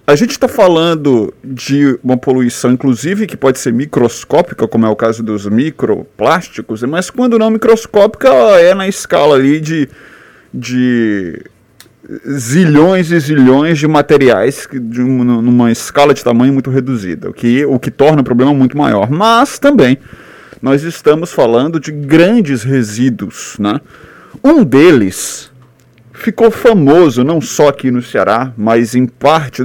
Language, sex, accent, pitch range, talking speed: Portuguese, male, Brazilian, 120-155 Hz, 145 wpm